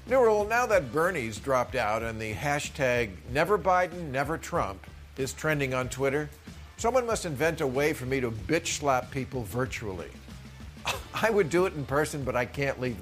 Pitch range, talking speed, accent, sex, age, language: 110-155 Hz, 170 wpm, American, male, 50-69, English